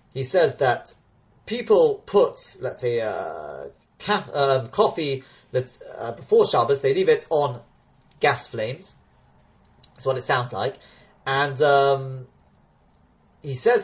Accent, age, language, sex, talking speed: British, 30-49, English, male, 130 wpm